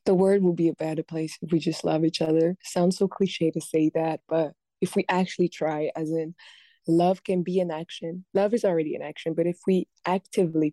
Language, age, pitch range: English, 20-39, 155-180 Hz